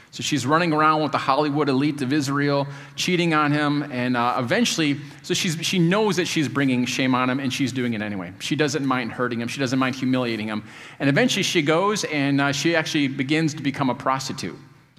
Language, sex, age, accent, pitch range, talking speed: English, male, 40-59, American, 130-160 Hz, 215 wpm